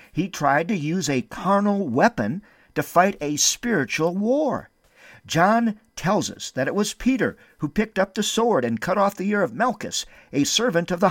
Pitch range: 150-220 Hz